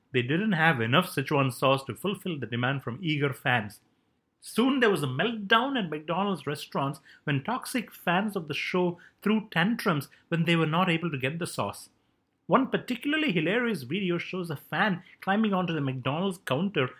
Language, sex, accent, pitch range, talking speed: English, male, Indian, 130-190 Hz, 175 wpm